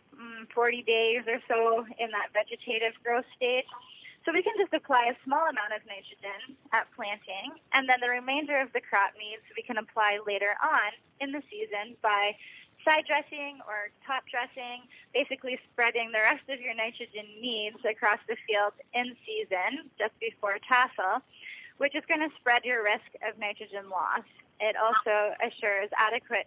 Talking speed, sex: 165 wpm, female